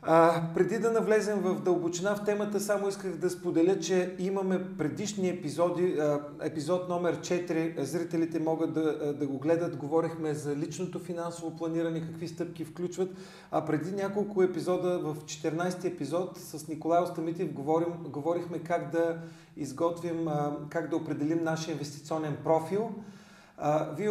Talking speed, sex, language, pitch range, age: 135 wpm, male, Bulgarian, 155-180 Hz, 40-59